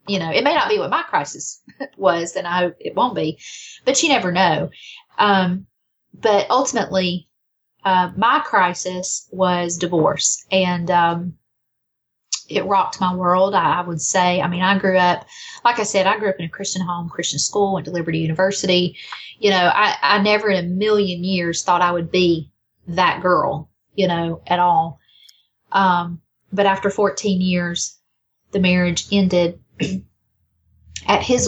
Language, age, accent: English, 30-49, American